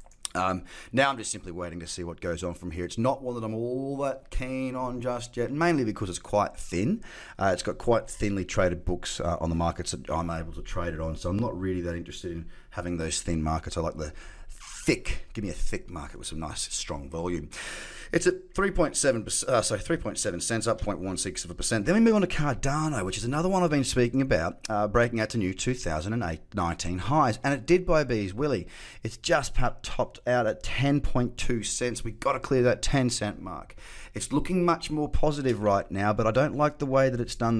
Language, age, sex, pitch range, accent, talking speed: English, 30-49, male, 90-135 Hz, Australian, 230 wpm